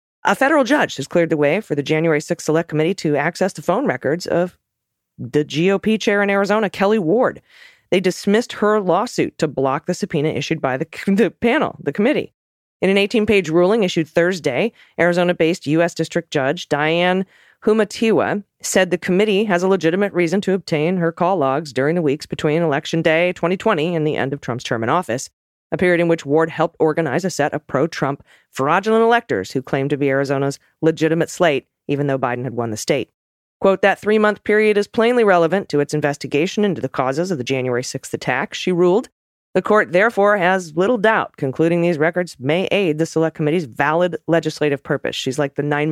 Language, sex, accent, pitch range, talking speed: English, female, American, 145-190 Hz, 200 wpm